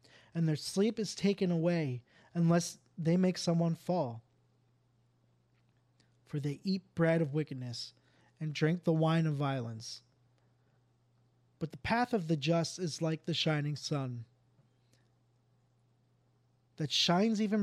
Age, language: 20-39, English